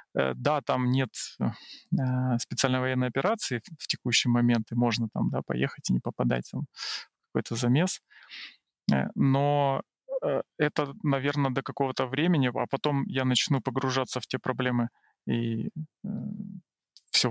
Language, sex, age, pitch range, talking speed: Russian, male, 20-39, 120-140 Hz, 130 wpm